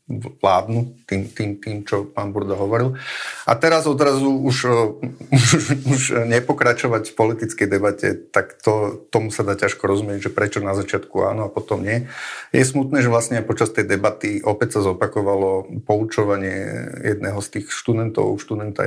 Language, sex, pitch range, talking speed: Slovak, male, 100-120 Hz, 160 wpm